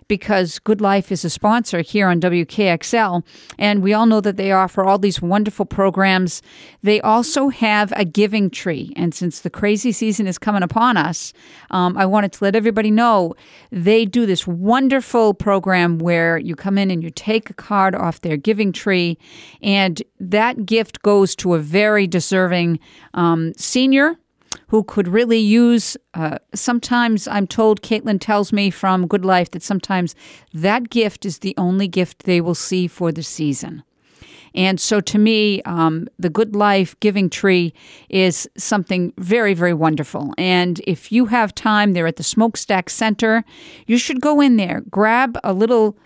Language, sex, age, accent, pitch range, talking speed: English, female, 50-69, American, 180-220 Hz, 170 wpm